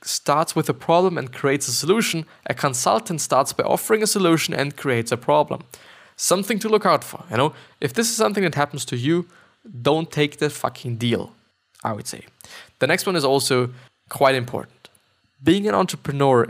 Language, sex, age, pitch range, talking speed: English, male, 20-39, 125-170 Hz, 190 wpm